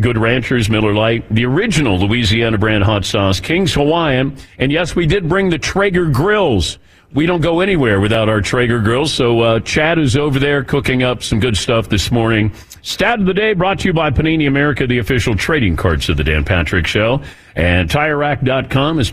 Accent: American